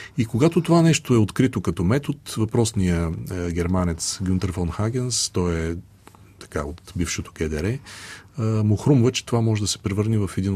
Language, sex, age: Bulgarian, male, 40-59